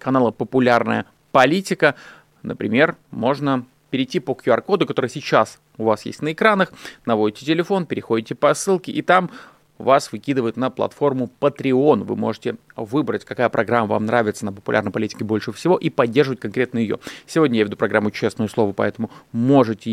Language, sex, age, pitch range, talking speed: Russian, male, 30-49, 110-145 Hz, 155 wpm